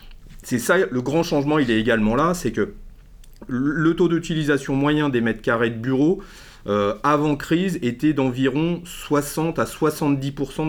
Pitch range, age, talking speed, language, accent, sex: 115-150 Hz, 40-59, 150 wpm, French, French, male